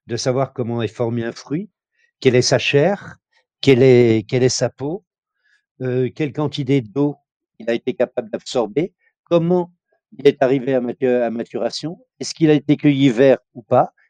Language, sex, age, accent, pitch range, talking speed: French, male, 60-79, French, 110-140 Hz, 170 wpm